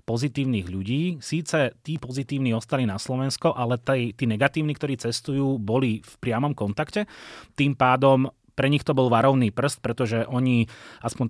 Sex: male